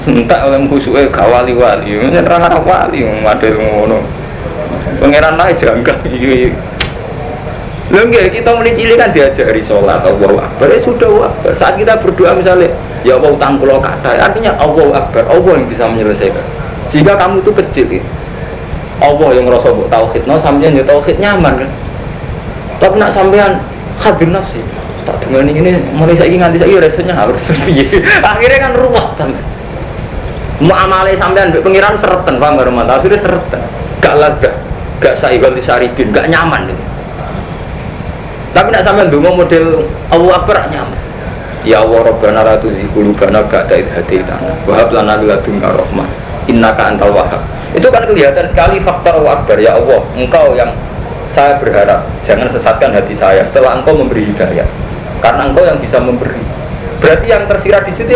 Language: Indonesian